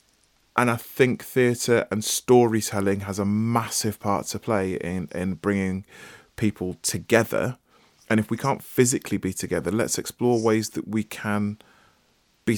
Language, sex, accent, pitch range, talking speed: English, male, British, 95-115 Hz, 150 wpm